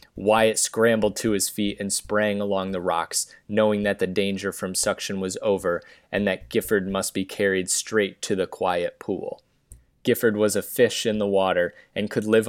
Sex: male